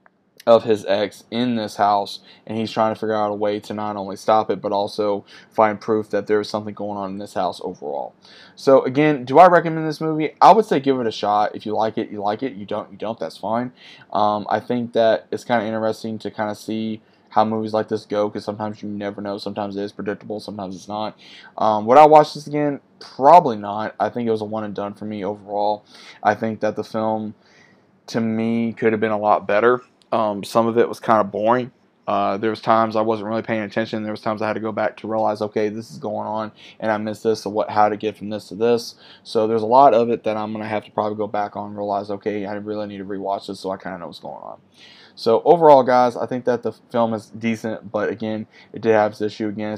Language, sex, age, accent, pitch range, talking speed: English, male, 20-39, American, 105-115 Hz, 260 wpm